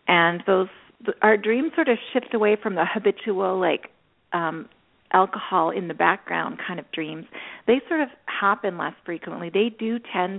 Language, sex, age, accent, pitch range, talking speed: English, female, 40-59, American, 170-220 Hz, 170 wpm